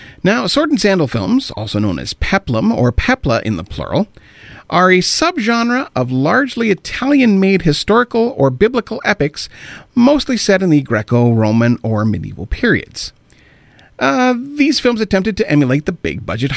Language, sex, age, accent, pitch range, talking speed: English, male, 40-59, American, 120-190 Hz, 145 wpm